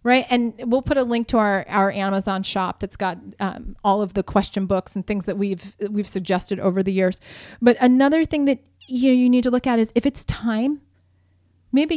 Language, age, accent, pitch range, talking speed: English, 30-49, American, 195-245 Hz, 215 wpm